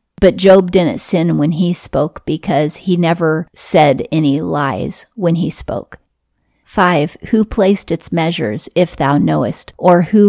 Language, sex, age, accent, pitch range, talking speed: English, female, 40-59, American, 160-185 Hz, 150 wpm